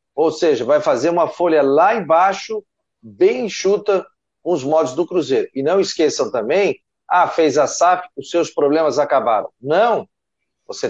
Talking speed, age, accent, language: 160 wpm, 40-59, Brazilian, Portuguese